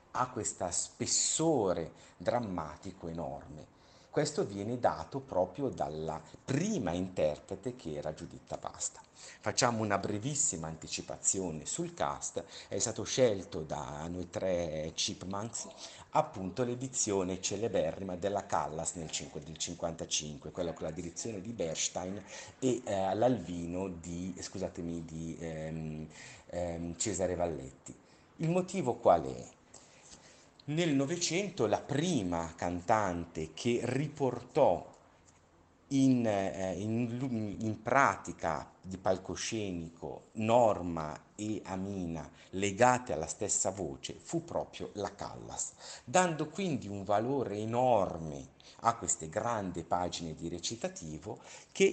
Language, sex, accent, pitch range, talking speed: Italian, male, native, 85-120 Hz, 105 wpm